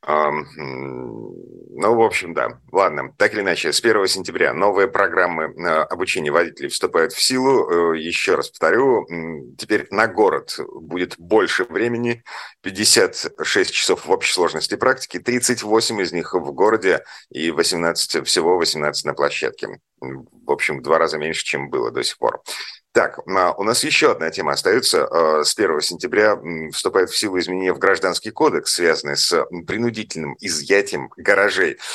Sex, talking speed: male, 145 wpm